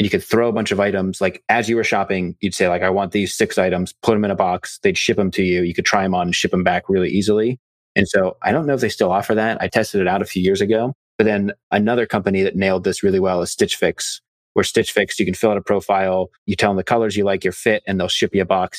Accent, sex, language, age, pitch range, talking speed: American, male, English, 30-49, 95-105 Hz, 305 wpm